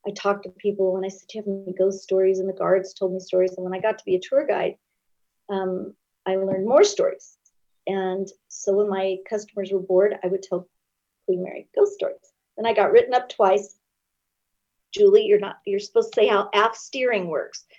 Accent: American